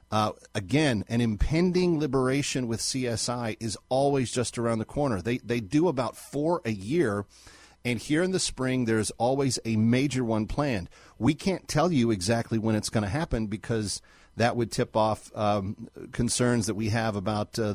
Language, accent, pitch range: English, American, 105-130 Hz